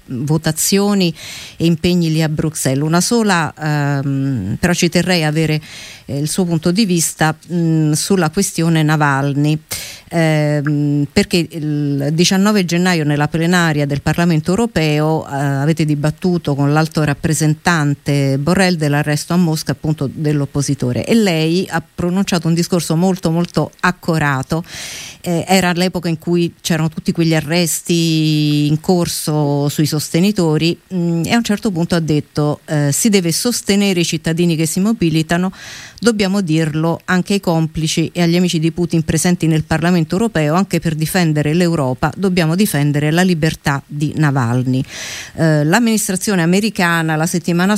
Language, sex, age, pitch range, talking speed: Italian, female, 50-69, 150-175 Hz, 140 wpm